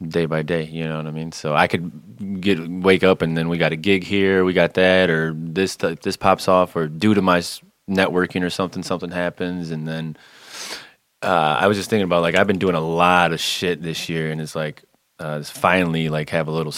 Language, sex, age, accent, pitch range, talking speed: English, male, 20-39, American, 80-90 Hz, 235 wpm